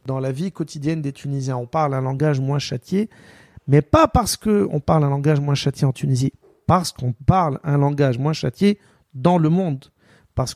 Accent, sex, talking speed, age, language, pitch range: French, male, 195 wpm, 40-59, French, 130-170 Hz